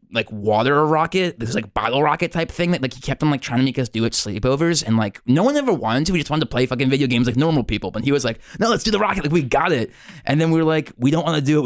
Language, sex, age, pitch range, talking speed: English, male, 20-39, 115-160 Hz, 335 wpm